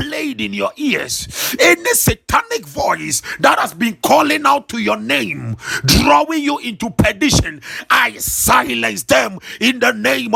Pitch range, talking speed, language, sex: 175-220 Hz, 150 wpm, English, male